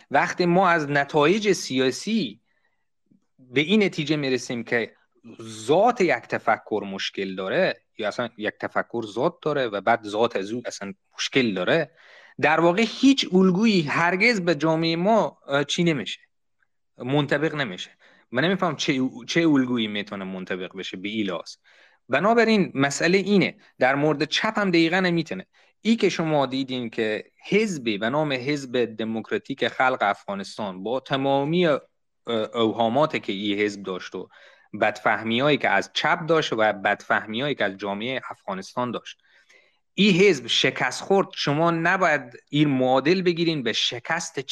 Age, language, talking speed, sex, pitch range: 30-49, Persian, 140 wpm, male, 115-175 Hz